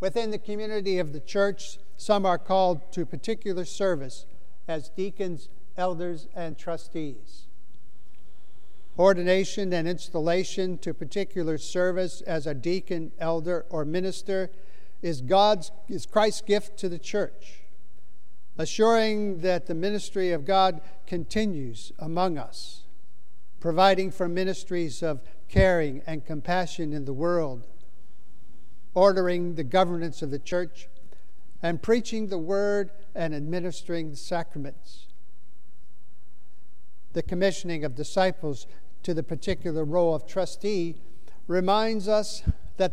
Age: 50-69